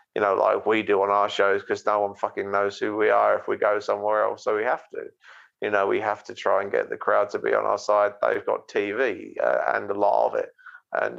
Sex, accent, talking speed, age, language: male, British, 270 wpm, 30-49, English